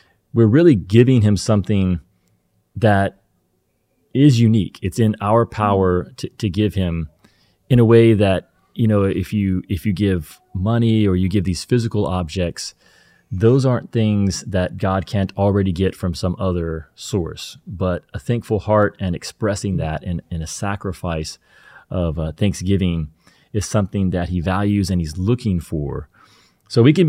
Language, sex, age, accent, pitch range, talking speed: English, male, 30-49, American, 85-105 Hz, 160 wpm